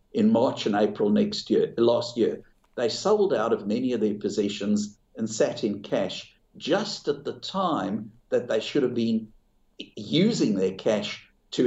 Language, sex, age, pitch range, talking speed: English, male, 60-79, 105-175 Hz, 170 wpm